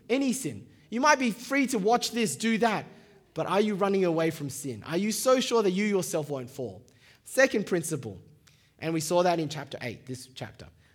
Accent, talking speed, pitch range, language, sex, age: Australian, 210 wpm, 150-230 Hz, English, male, 20-39